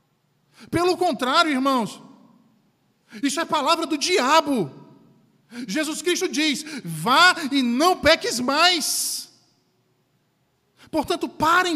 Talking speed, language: 90 wpm, Portuguese